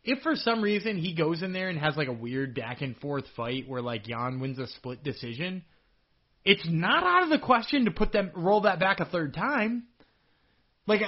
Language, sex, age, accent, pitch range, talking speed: English, male, 30-49, American, 150-210 Hz, 205 wpm